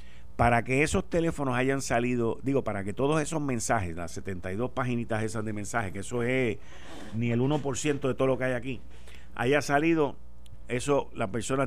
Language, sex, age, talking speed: Spanish, male, 50-69, 180 wpm